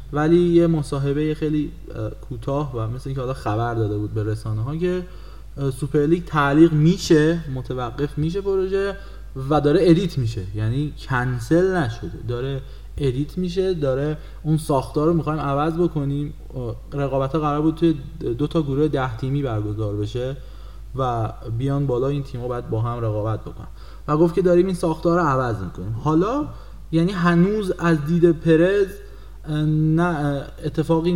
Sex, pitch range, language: male, 120-160 Hz, Persian